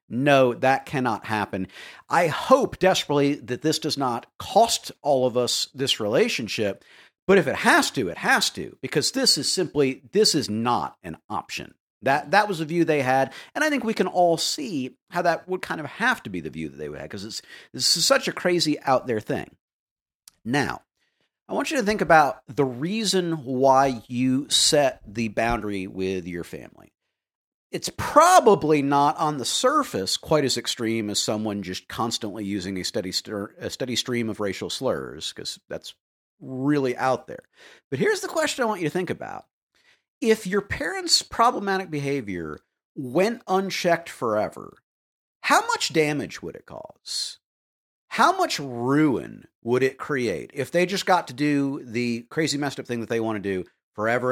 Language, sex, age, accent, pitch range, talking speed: English, male, 50-69, American, 115-175 Hz, 180 wpm